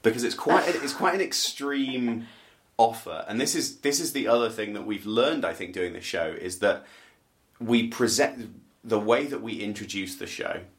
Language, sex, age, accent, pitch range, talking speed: English, male, 30-49, British, 95-120 Hz, 200 wpm